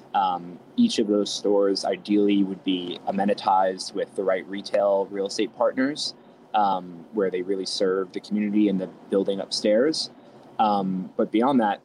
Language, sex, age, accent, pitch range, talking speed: English, male, 20-39, American, 95-110 Hz, 155 wpm